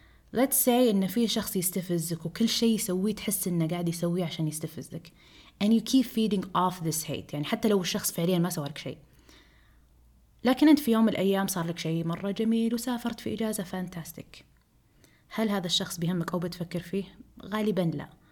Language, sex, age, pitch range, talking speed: Arabic, female, 20-39, 160-205 Hz, 175 wpm